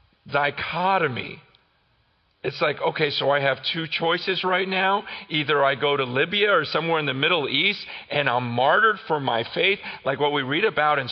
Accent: American